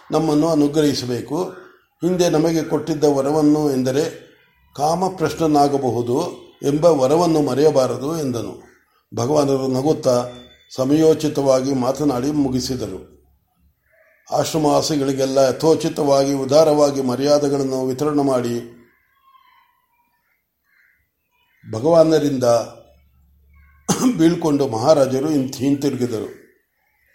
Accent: native